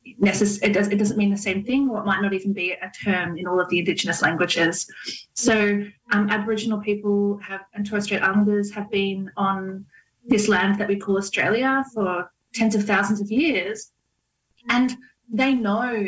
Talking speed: 170 wpm